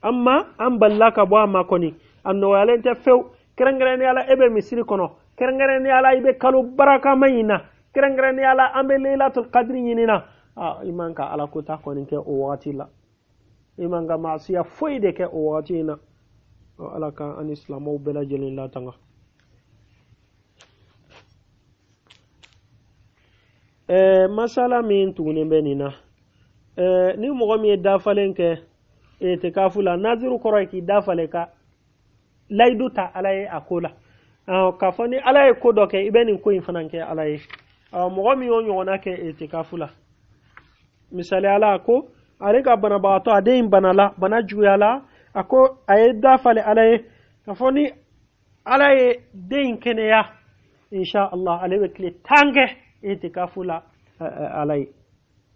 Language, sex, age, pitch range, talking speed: Finnish, male, 40-59, 145-235 Hz, 110 wpm